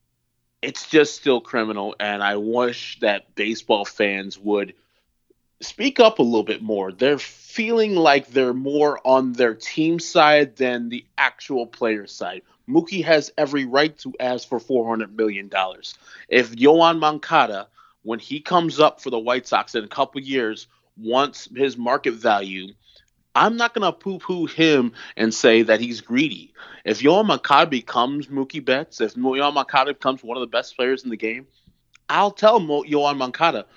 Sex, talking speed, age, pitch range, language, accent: male, 165 wpm, 20-39, 115-150 Hz, English, American